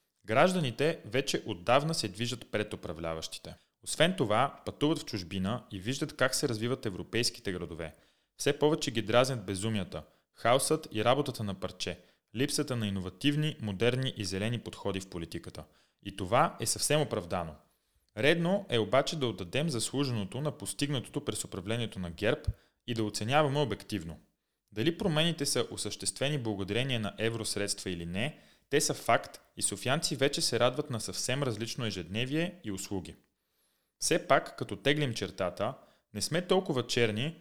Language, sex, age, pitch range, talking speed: Bulgarian, male, 30-49, 100-140 Hz, 145 wpm